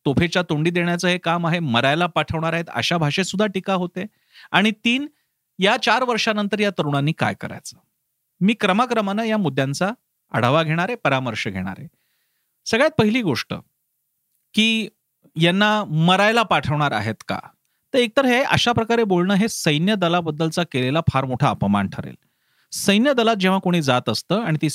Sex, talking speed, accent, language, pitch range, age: male, 155 wpm, native, Marathi, 140-195 Hz, 40-59